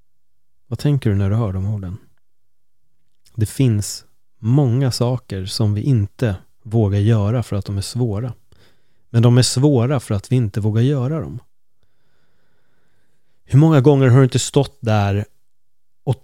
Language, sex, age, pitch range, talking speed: Swedish, male, 30-49, 110-130 Hz, 155 wpm